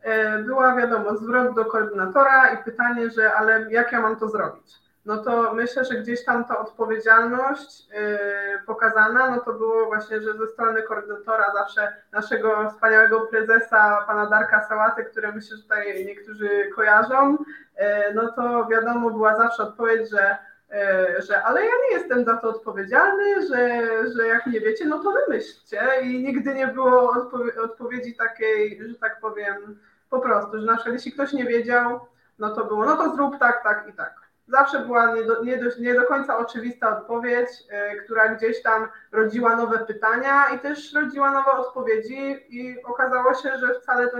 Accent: native